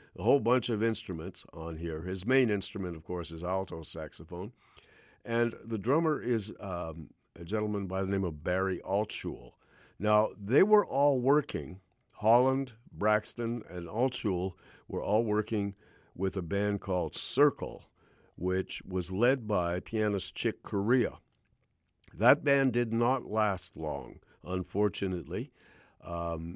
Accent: American